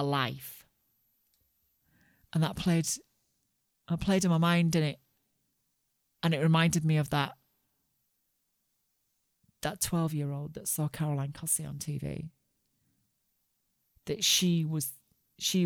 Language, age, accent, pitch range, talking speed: English, 40-59, British, 135-170 Hz, 120 wpm